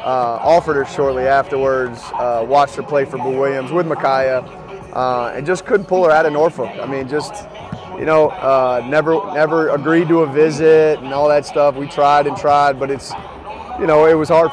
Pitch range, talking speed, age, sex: 130-155 Hz, 205 wpm, 30-49, male